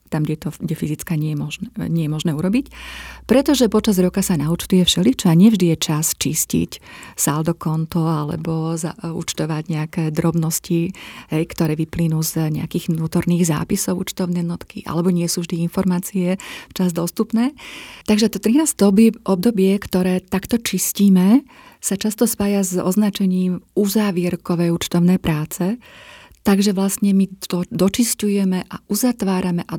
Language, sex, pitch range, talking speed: Slovak, female, 165-200 Hz, 135 wpm